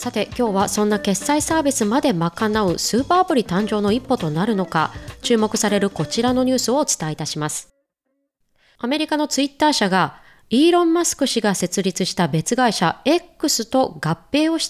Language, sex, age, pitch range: Japanese, female, 20-39, 190-275 Hz